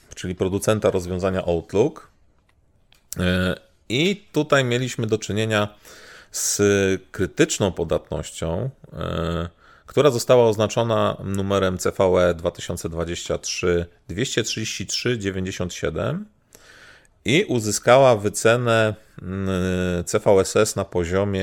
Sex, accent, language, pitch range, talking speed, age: male, native, Polish, 95-125 Hz, 65 wpm, 40-59